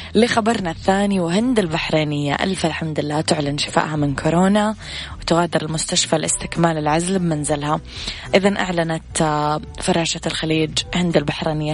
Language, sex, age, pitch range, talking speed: Arabic, female, 20-39, 150-175 Hz, 110 wpm